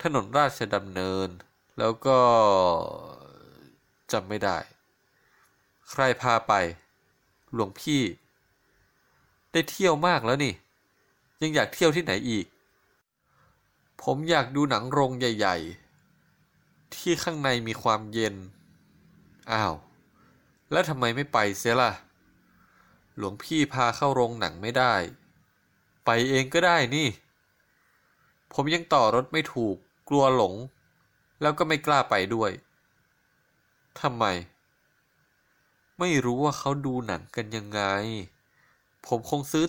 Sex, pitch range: male, 110-150 Hz